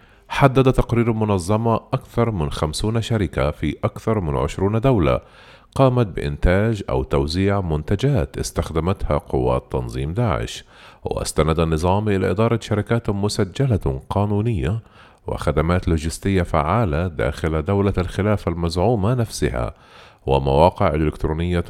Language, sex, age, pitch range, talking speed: Arabic, male, 40-59, 80-110 Hz, 105 wpm